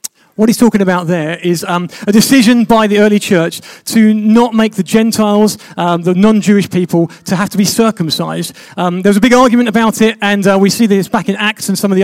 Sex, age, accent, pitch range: male, 30-49, British, 195-235 Hz